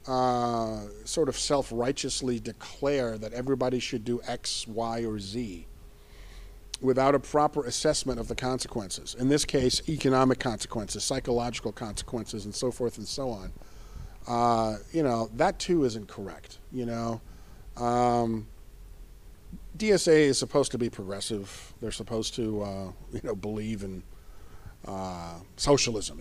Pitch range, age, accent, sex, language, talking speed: 100-120 Hz, 40-59, American, male, English, 135 wpm